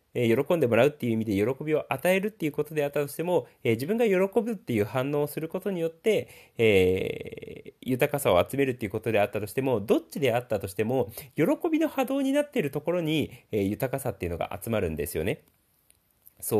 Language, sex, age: Japanese, male, 30-49